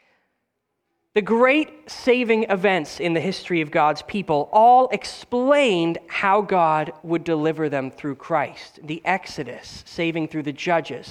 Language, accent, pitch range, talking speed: English, American, 165-245 Hz, 135 wpm